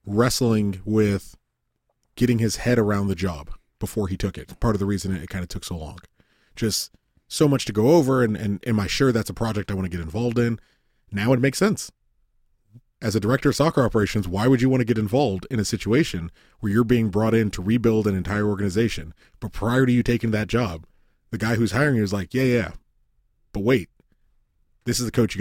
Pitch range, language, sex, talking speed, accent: 100-145 Hz, English, male, 225 wpm, American